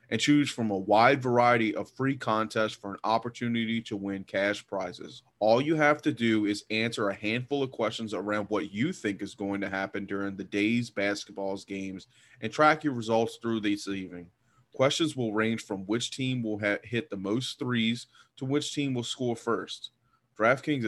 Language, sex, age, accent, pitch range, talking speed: English, male, 30-49, American, 105-125 Hz, 185 wpm